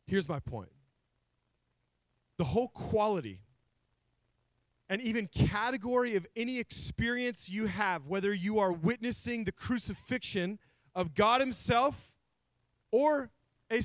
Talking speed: 110 wpm